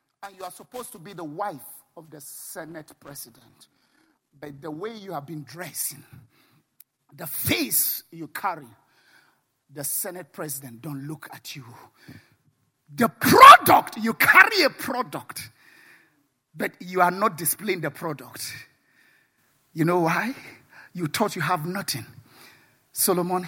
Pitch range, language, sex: 140-215 Hz, English, male